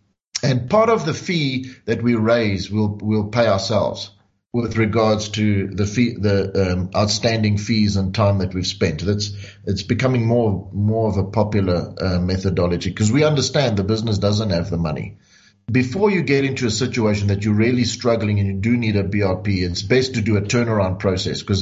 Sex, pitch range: male, 100-125 Hz